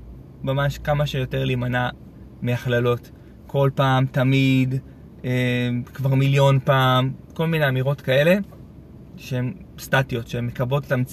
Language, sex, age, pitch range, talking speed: Hebrew, male, 20-39, 125-150 Hz, 100 wpm